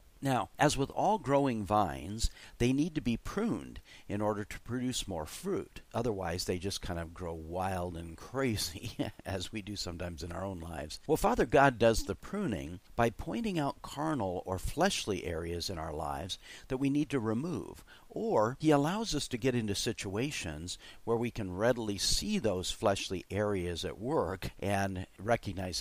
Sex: male